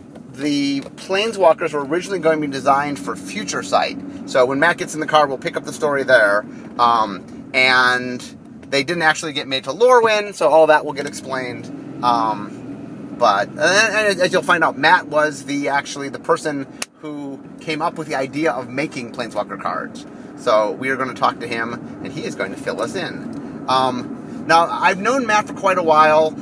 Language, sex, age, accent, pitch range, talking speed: English, male, 30-49, American, 135-180 Hz, 200 wpm